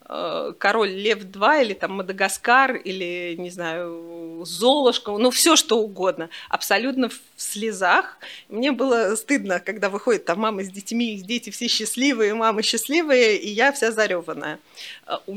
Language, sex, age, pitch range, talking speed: Russian, female, 30-49, 190-255 Hz, 140 wpm